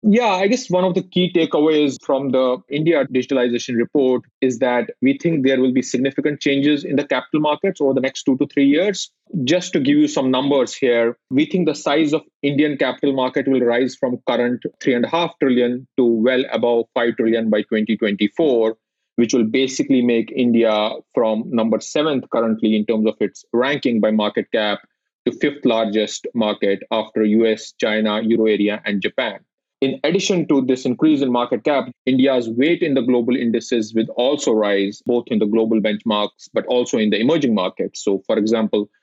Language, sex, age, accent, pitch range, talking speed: English, male, 30-49, Indian, 110-140 Hz, 190 wpm